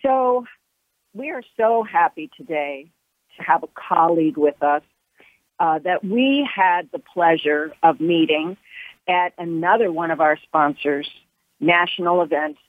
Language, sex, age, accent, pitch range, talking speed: English, female, 50-69, American, 160-185 Hz, 130 wpm